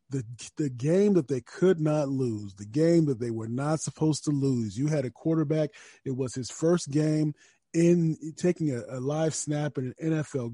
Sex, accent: male, American